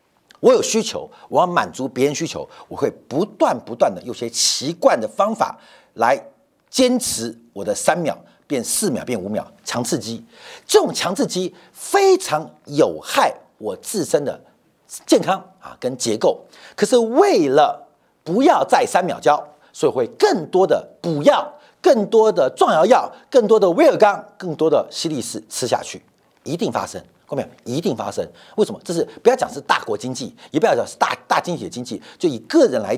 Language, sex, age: Chinese, male, 50-69